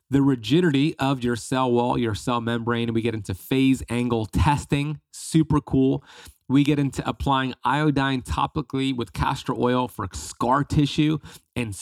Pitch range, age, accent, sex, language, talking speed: 110-145 Hz, 30-49, American, male, English, 155 wpm